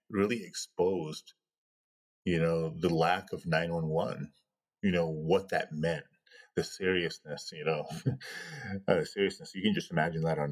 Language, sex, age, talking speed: English, male, 30-49, 145 wpm